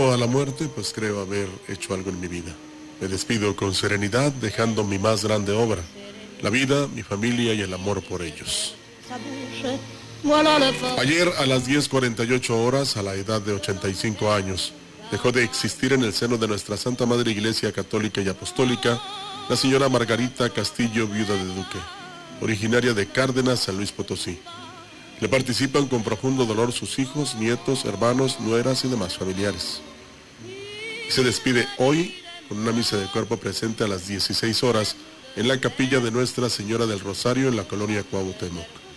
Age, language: 40-59, Spanish